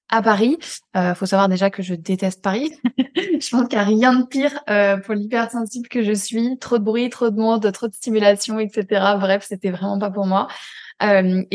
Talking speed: 220 wpm